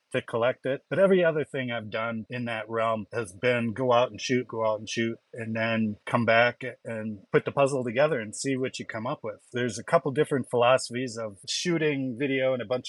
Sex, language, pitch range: male, English, 115-135 Hz